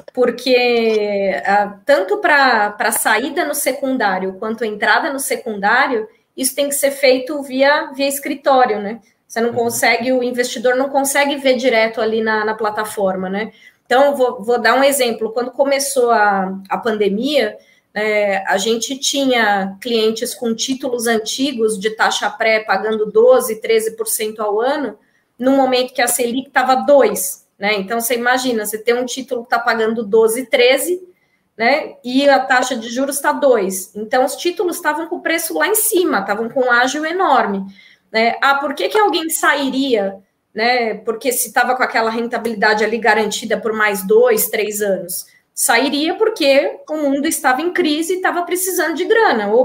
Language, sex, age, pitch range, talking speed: Portuguese, female, 20-39, 220-280 Hz, 165 wpm